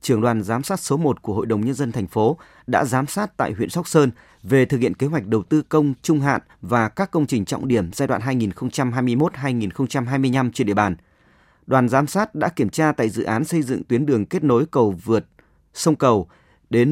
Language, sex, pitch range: Vietnamese, male, 115-155 Hz